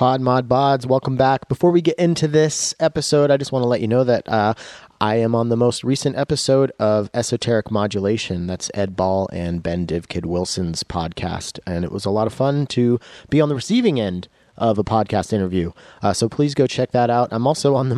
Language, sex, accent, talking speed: English, male, American, 215 wpm